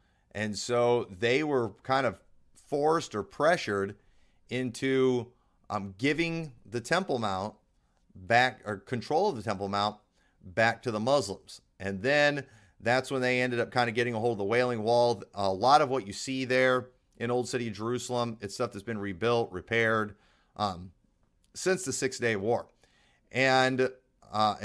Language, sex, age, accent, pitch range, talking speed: English, male, 40-59, American, 105-135 Hz, 165 wpm